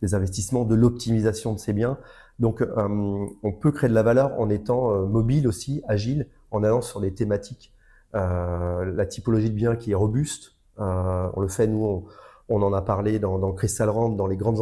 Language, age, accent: French, 30-49, French